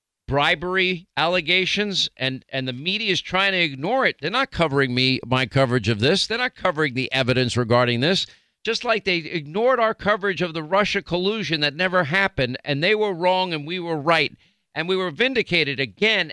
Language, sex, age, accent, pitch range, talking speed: English, male, 50-69, American, 140-185 Hz, 190 wpm